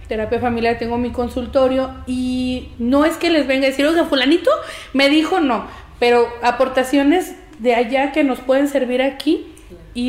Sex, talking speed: female, 165 wpm